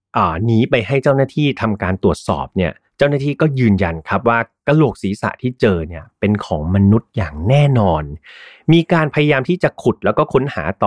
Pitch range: 100-145 Hz